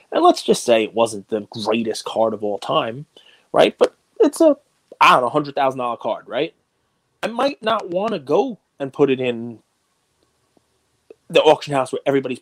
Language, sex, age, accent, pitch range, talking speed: English, male, 30-49, American, 115-135 Hz, 180 wpm